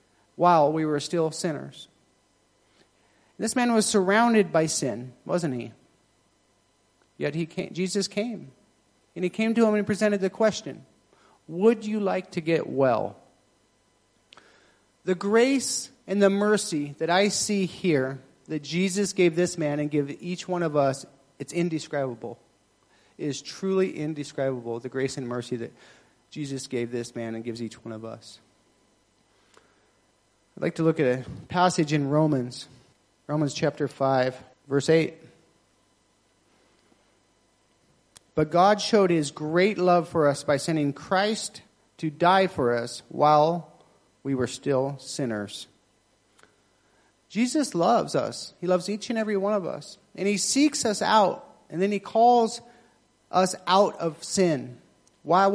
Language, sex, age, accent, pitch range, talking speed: English, male, 40-59, American, 130-195 Hz, 145 wpm